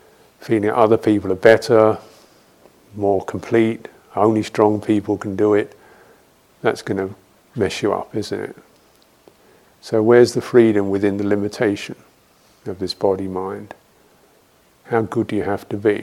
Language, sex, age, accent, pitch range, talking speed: English, male, 50-69, British, 105-120 Hz, 140 wpm